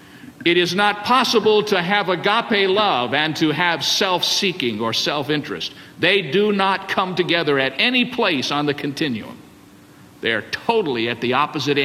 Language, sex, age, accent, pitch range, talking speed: English, male, 50-69, American, 140-200 Hz, 150 wpm